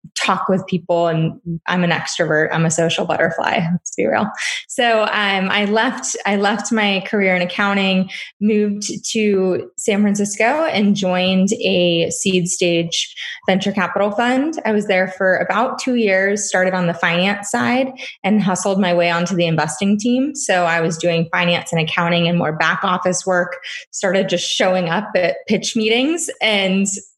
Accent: American